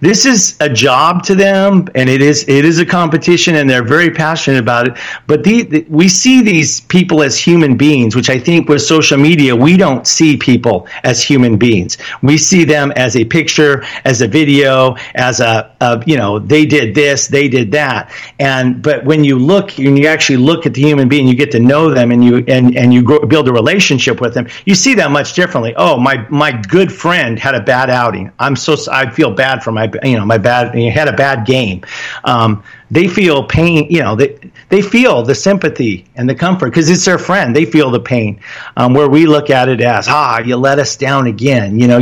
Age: 50-69